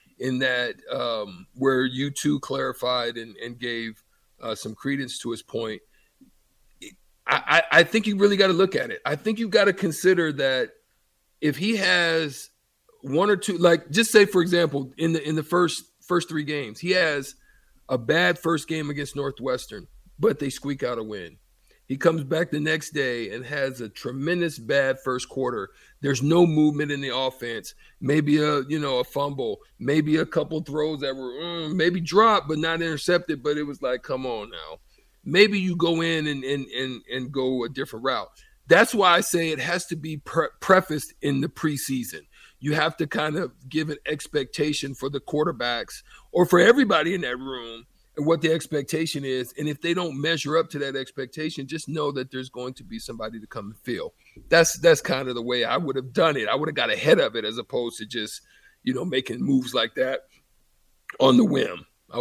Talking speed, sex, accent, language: 200 wpm, male, American, English